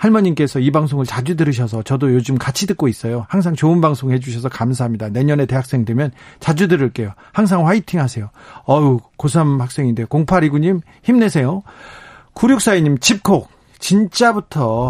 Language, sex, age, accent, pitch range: Korean, male, 40-59, native, 130-175 Hz